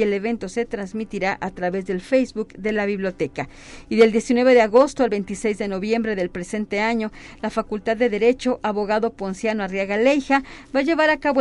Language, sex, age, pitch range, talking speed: Spanish, female, 40-59, 205-250 Hz, 195 wpm